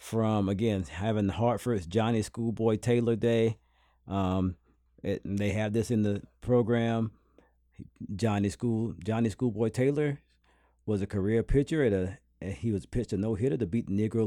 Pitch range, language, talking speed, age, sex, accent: 95-120 Hz, English, 160 wpm, 40-59, male, American